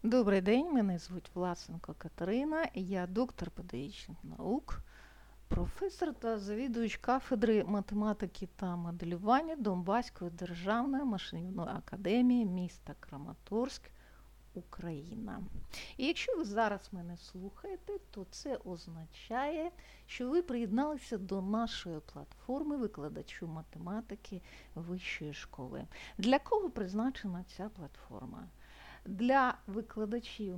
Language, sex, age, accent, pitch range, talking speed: Ukrainian, female, 50-69, native, 185-245 Hz, 100 wpm